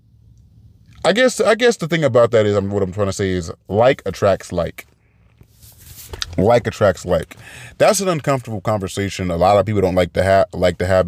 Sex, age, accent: male, 30-49, American